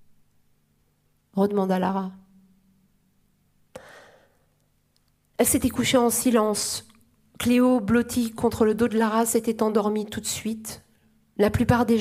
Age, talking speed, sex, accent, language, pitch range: 40-59, 110 wpm, female, French, French, 195-225 Hz